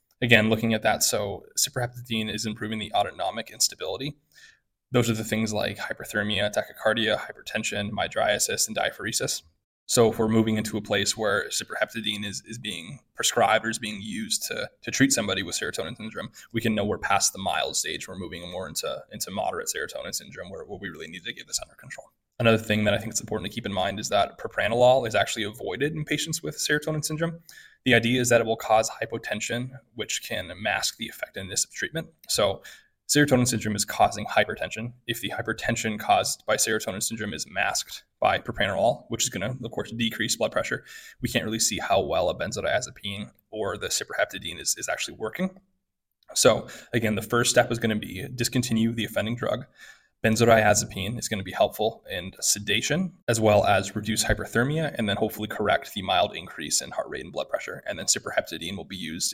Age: 20-39